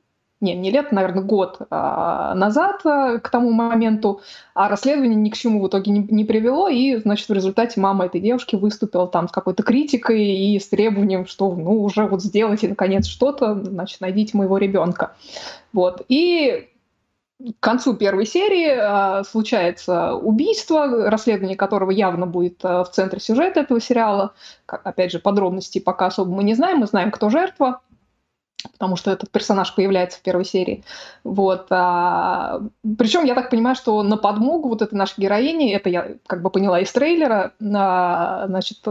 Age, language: 20-39, Russian